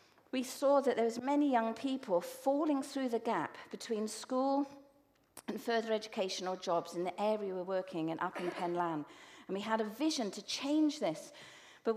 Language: English